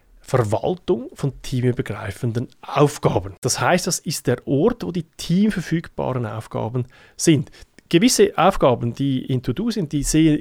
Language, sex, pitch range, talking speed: German, male, 115-150 Hz, 135 wpm